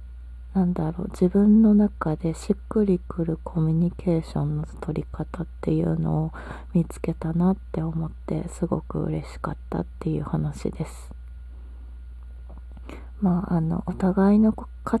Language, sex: Japanese, female